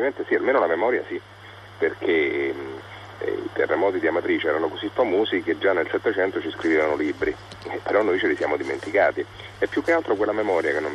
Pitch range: 350-420 Hz